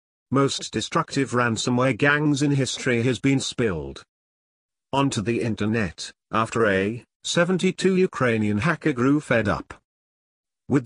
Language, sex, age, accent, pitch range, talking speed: English, male, 50-69, British, 95-140 Hz, 115 wpm